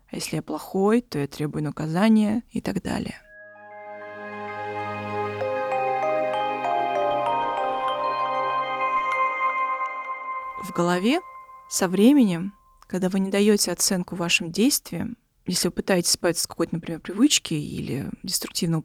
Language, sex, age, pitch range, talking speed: Russian, female, 20-39, 175-240 Hz, 100 wpm